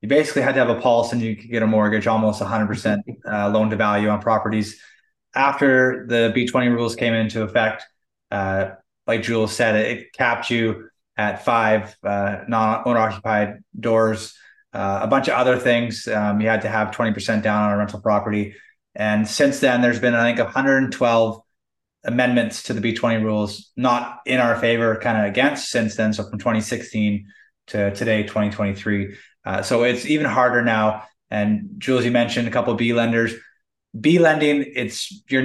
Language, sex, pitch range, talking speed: English, male, 110-125 Hz, 180 wpm